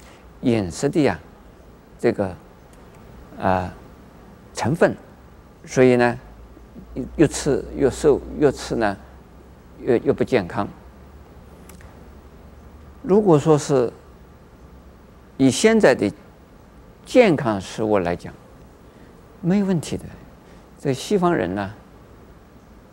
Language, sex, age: Chinese, male, 50-69